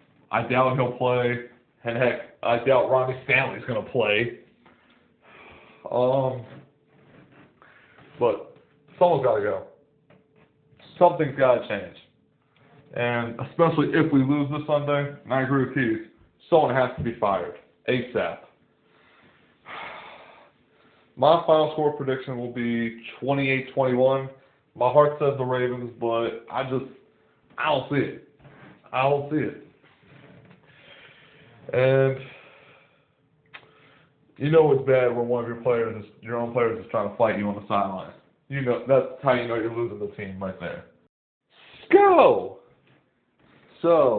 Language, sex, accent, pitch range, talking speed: English, male, American, 125-150 Hz, 135 wpm